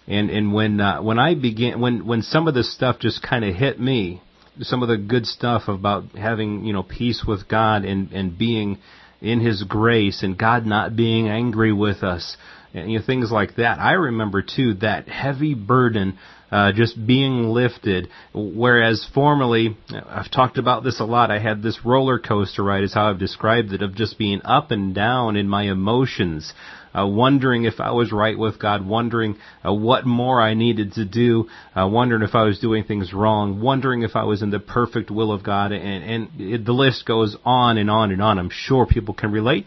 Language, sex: English, male